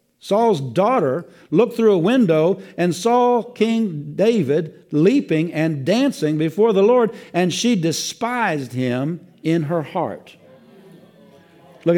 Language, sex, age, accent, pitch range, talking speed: English, male, 60-79, American, 155-210 Hz, 120 wpm